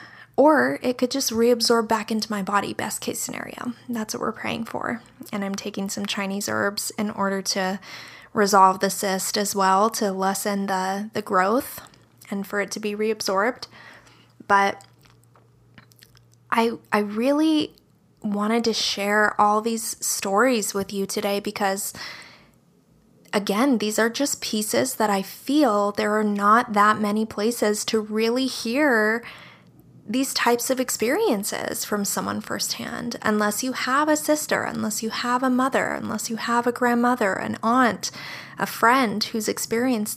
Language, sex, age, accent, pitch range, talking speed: English, female, 20-39, American, 200-240 Hz, 150 wpm